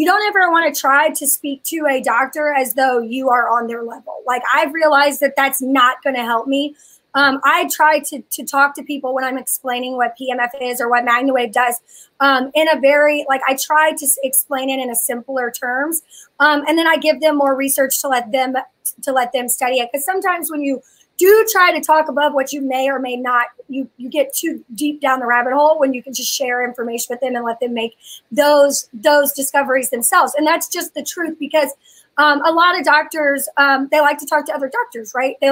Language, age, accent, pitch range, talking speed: English, 20-39, American, 255-300 Hz, 230 wpm